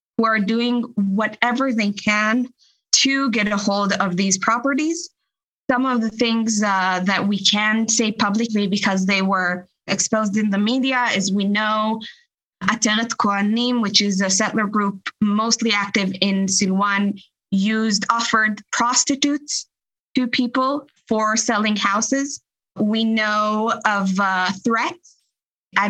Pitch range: 200-235 Hz